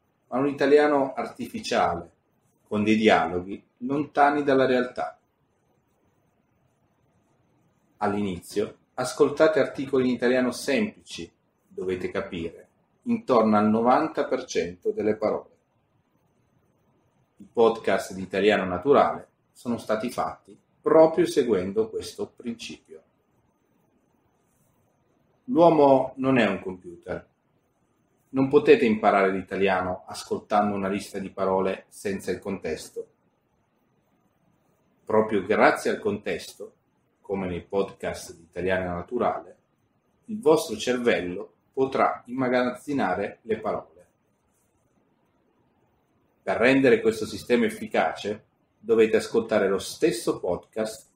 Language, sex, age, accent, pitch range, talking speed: Italian, male, 40-59, native, 100-150 Hz, 95 wpm